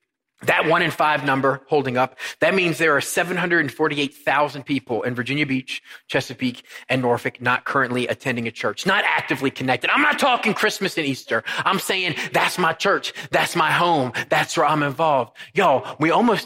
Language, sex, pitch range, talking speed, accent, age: English, male, 150-225 Hz, 175 wpm, American, 30-49